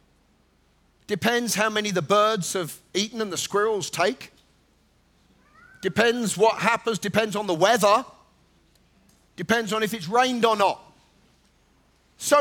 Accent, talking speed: British, 125 wpm